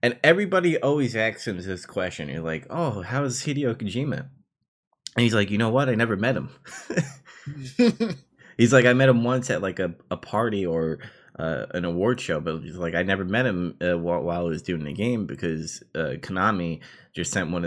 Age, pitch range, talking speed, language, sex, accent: 20-39, 90-125 Hz, 205 wpm, English, male, American